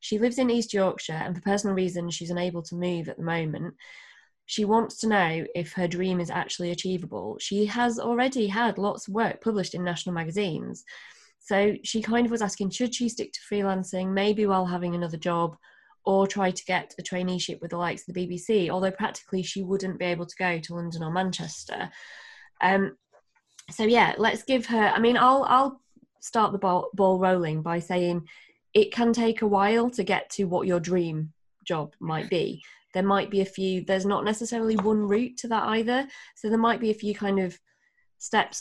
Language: English